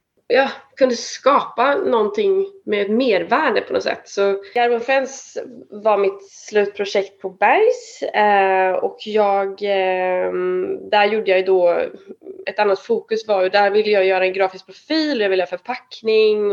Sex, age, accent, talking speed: female, 20-39, native, 145 wpm